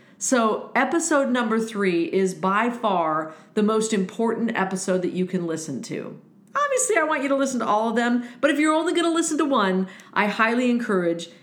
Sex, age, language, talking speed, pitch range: female, 50-69, English, 200 wpm, 180-240 Hz